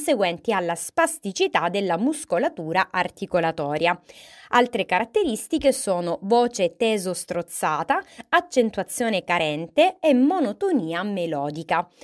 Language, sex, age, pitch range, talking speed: Italian, female, 20-39, 180-275 Hz, 75 wpm